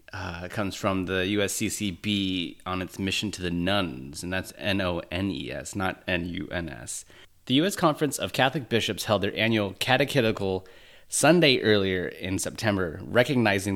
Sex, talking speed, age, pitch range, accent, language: male, 135 wpm, 30-49, 95-115 Hz, American, English